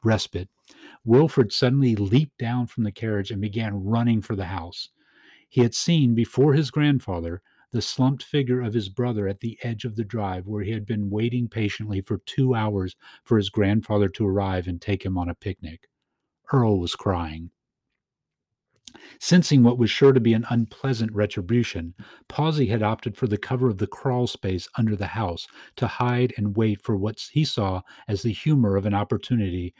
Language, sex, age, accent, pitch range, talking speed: English, male, 40-59, American, 95-120 Hz, 185 wpm